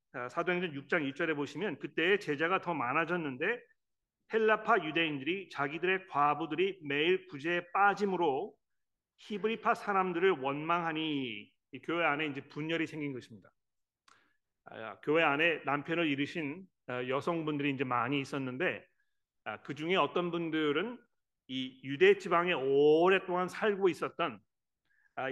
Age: 40-59